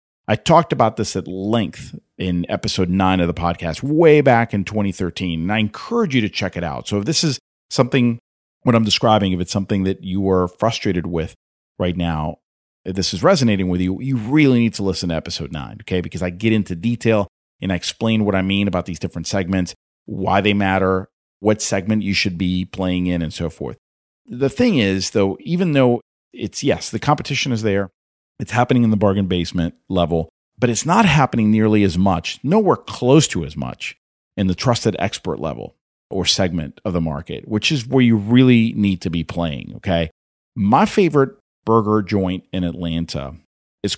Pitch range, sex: 85-110 Hz, male